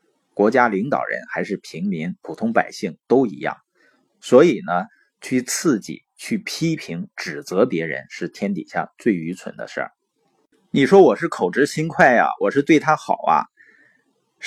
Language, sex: Chinese, male